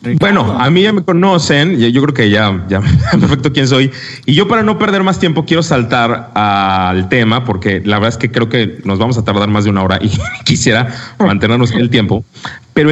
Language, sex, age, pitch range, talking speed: Spanish, male, 30-49, 105-130 Hz, 220 wpm